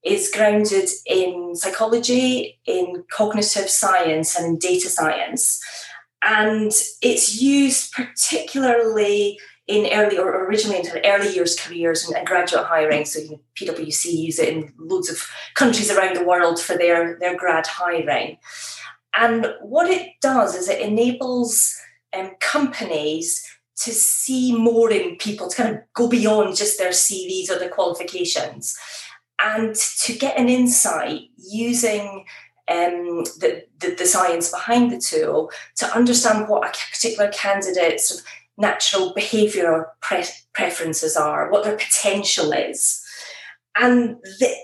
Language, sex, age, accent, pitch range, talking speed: English, female, 30-49, British, 180-235 Hz, 135 wpm